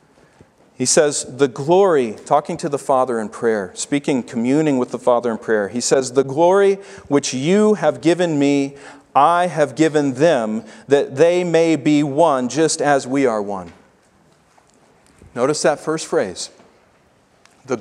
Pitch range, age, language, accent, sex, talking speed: 135-210 Hz, 40-59, English, American, male, 150 wpm